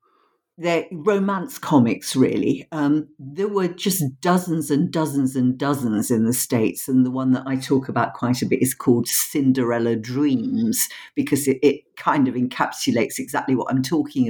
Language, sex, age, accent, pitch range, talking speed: English, female, 50-69, British, 140-220 Hz, 170 wpm